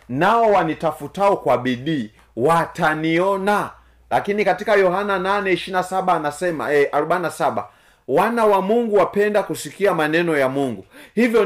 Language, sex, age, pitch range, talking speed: Swahili, male, 30-49, 115-175 Hz, 110 wpm